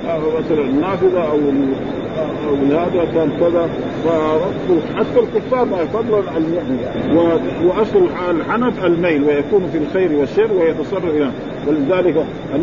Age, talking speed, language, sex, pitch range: 50-69, 115 wpm, Arabic, male, 155-215 Hz